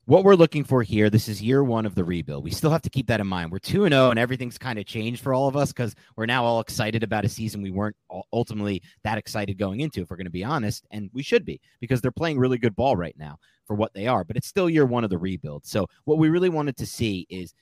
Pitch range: 100-135 Hz